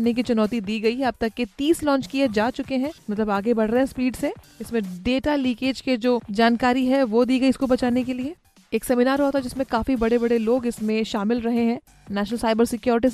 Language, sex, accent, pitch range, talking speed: Hindi, female, native, 230-265 Hz, 235 wpm